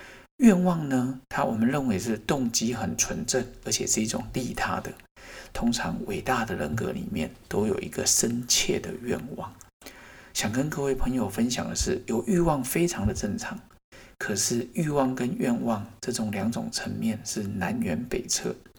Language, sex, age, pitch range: Chinese, male, 50-69, 110-130 Hz